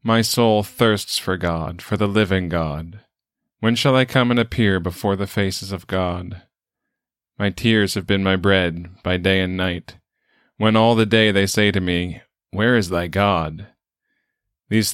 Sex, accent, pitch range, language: male, American, 95-115 Hz, English